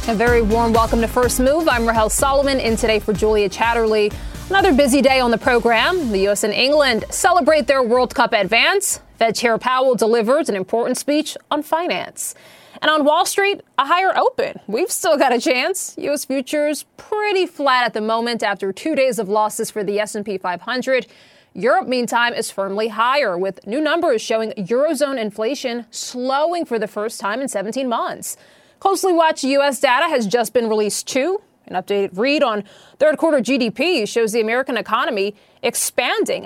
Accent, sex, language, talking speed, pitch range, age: American, female, English, 175 wpm, 220-290 Hz, 30-49